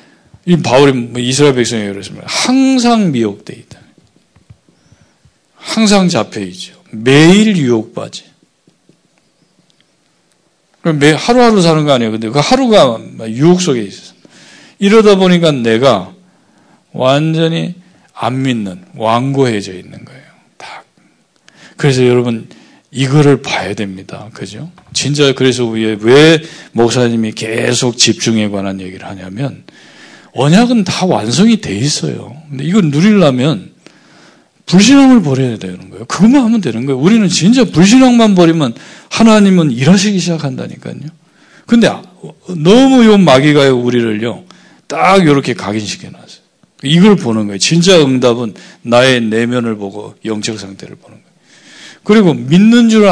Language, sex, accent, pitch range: Korean, male, native, 115-190 Hz